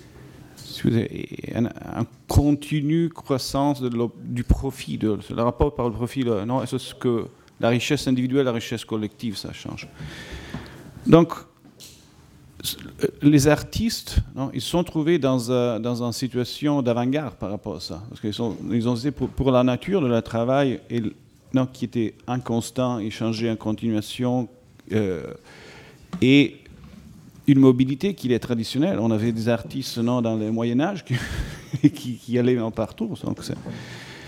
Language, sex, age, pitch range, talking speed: French, male, 40-59, 115-140 Hz, 150 wpm